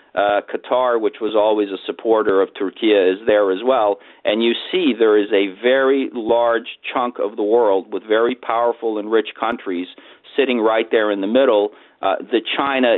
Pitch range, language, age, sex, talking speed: 100-115 Hz, English, 50-69, male, 185 wpm